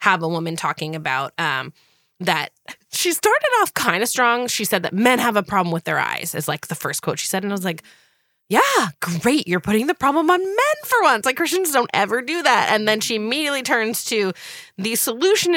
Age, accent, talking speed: 20-39, American, 225 wpm